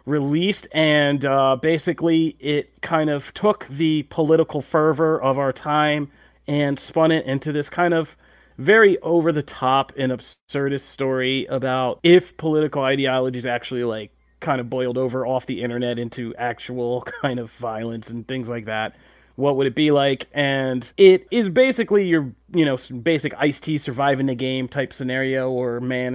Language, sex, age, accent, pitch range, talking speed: English, male, 30-49, American, 125-155 Hz, 165 wpm